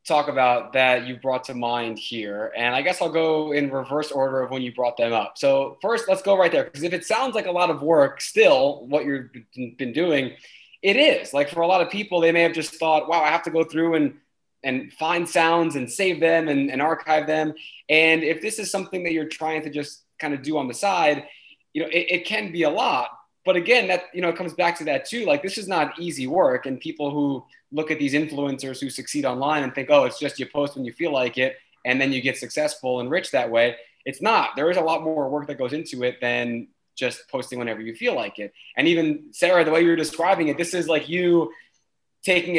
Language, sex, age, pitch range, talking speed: English, male, 20-39, 135-180 Hz, 250 wpm